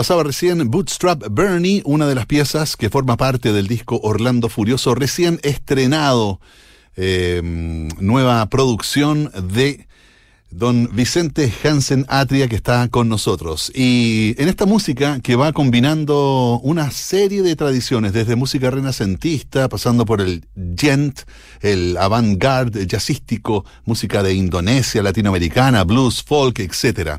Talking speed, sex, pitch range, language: 130 wpm, male, 110-150 Hz, Spanish